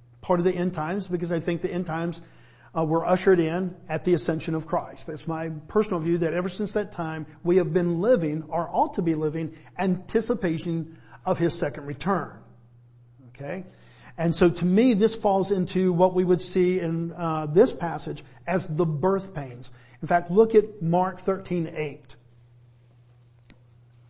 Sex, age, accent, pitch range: male, 50-69, American, 150-185 Hz